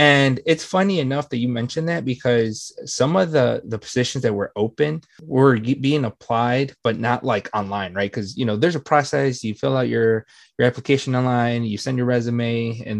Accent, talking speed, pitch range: American, 200 wpm, 125-175 Hz